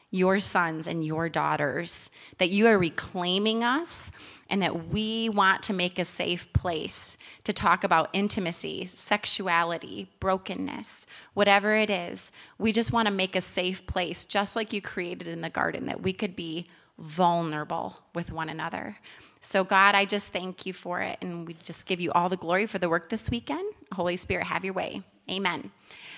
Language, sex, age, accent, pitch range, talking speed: English, female, 30-49, American, 180-230 Hz, 180 wpm